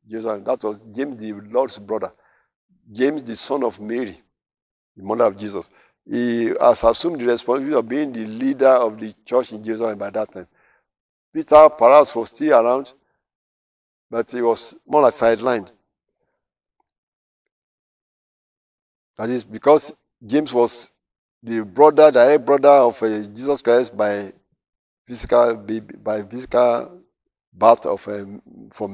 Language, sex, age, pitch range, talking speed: English, male, 50-69, 105-125 Hz, 135 wpm